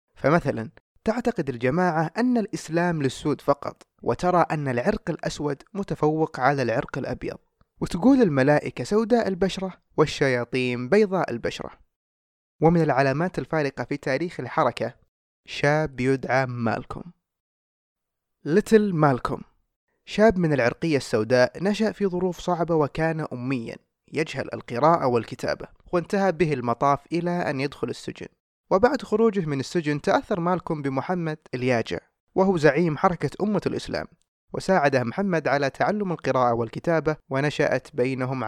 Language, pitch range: Arabic, 130-175 Hz